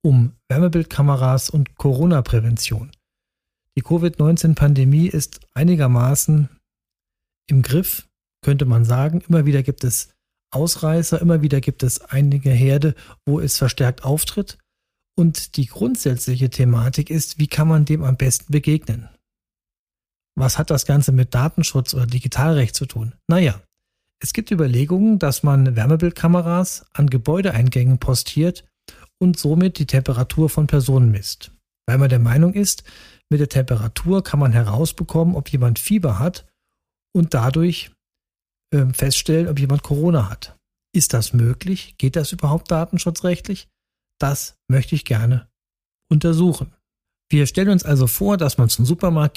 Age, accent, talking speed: 40-59, German, 135 wpm